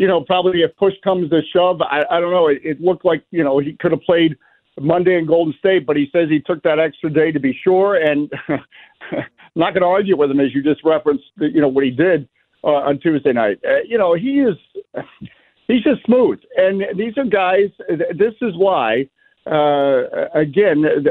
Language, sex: English, male